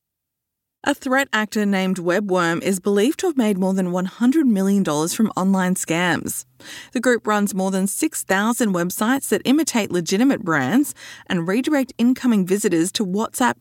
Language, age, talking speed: English, 20-39, 150 wpm